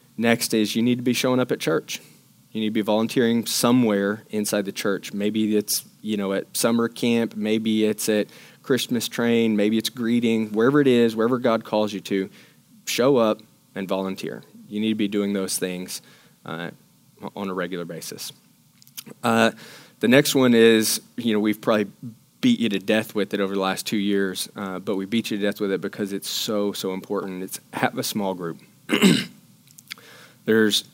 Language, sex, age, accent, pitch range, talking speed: English, male, 20-39, American, 95-115 Hz, 190 wpm